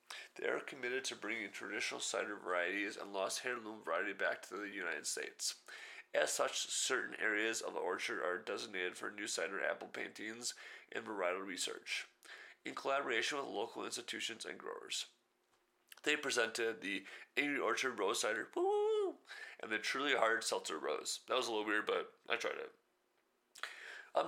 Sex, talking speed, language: male, 160 wpm, English